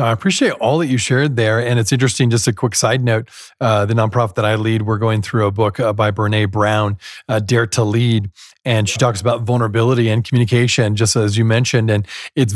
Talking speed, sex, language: 225 wpm, male, English